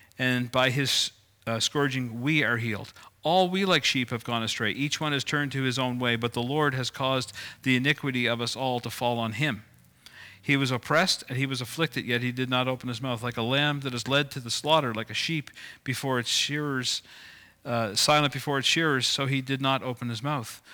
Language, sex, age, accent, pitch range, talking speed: English, male, 50-69, American, 120-150 Hz, 225 wpm